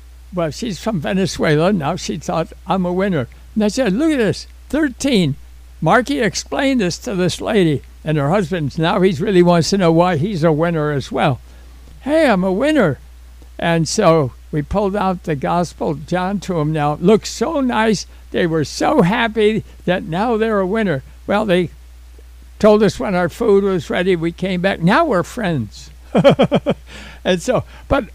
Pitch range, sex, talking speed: 135-205 Hz, male, 175 wpm